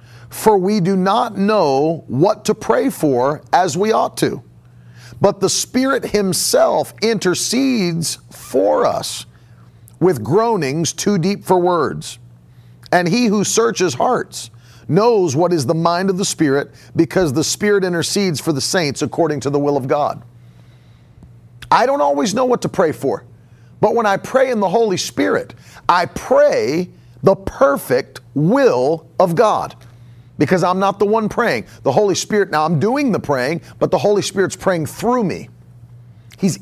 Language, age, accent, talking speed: English, 40-59, American, 160 wpm